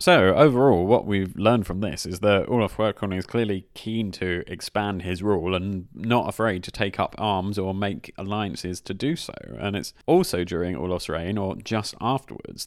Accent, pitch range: British, 95-115 Hz